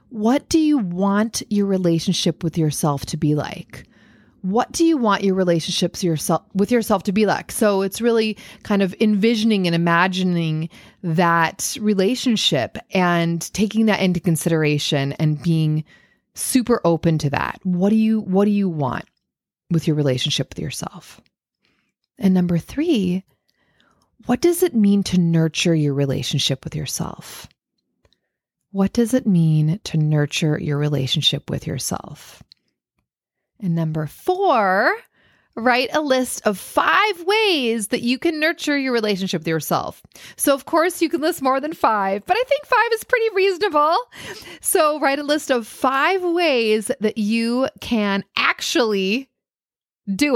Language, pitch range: English, 170-255 Hz